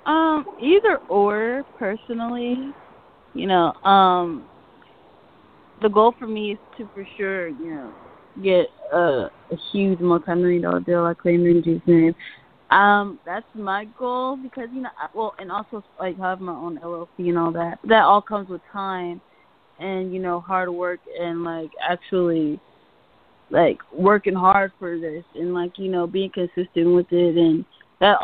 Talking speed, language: 165 wpm, English